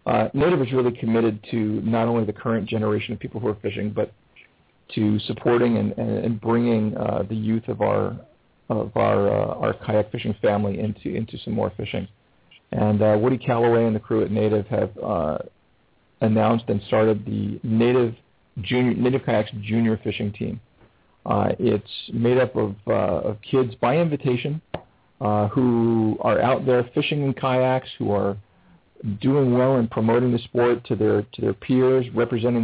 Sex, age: male, 40-59